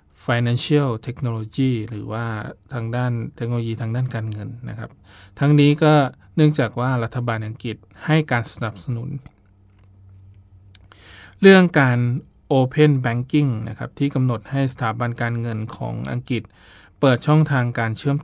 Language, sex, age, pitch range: Thai, male, 20-39, 110-130 Hz